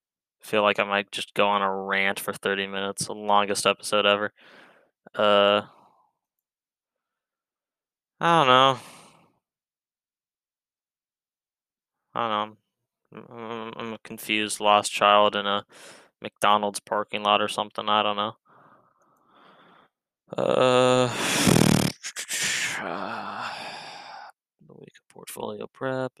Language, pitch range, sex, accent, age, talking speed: English, 100-115 Hz, male, American, 20-39, 100 wpm